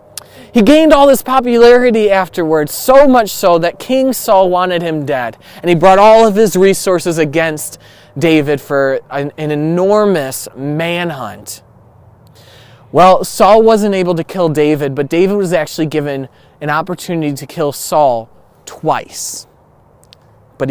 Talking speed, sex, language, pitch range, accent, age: 140 wpm, male, English, 140-190 Hz, American, 20-39